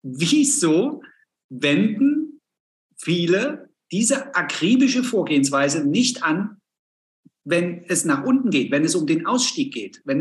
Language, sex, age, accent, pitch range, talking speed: German, male, 50-69, German, 180-250 Hz, 120 wpm